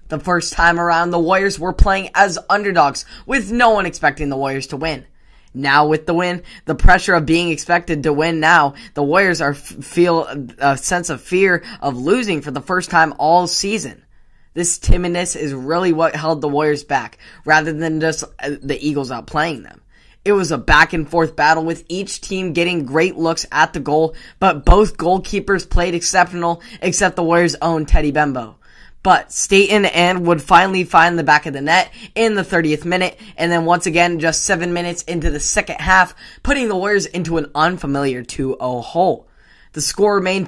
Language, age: English, 10-29